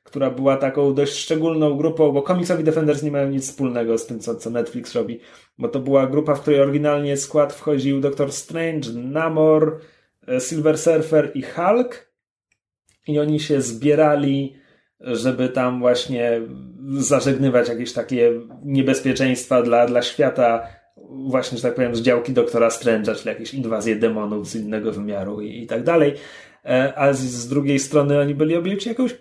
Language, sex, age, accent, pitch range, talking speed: Polish, male, 30-49, native, 125-155 Hz, 155 wpm